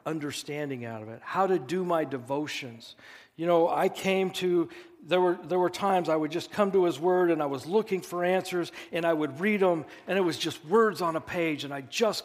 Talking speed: 235 wpm